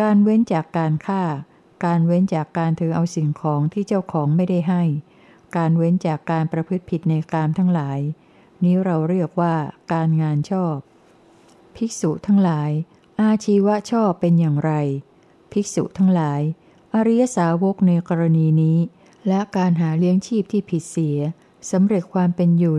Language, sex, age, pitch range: Thai, female, 60-79, 160-190 Hz